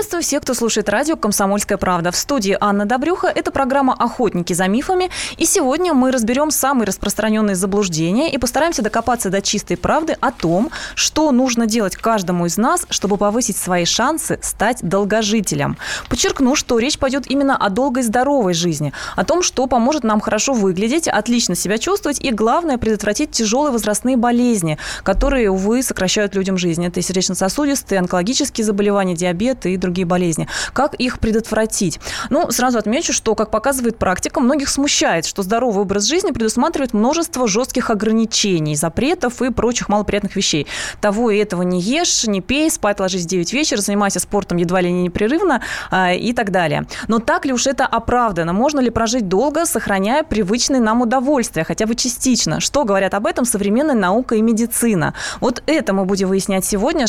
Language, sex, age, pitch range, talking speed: Russian, female, 20-39, 195-270 Hz, 165 wpm